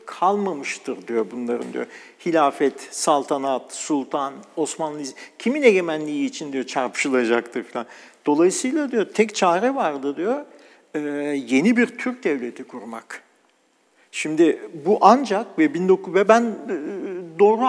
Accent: native